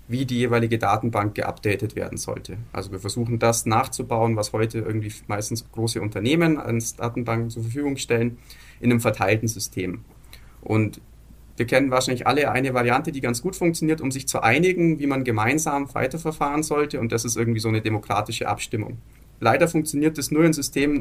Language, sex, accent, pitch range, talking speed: German, male, German, 110-130 Hz, 175 wpm